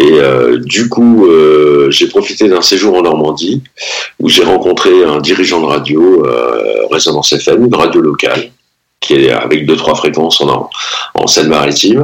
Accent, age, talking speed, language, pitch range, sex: French, 50-69, 160 wpm, French, 260-415 Hz, male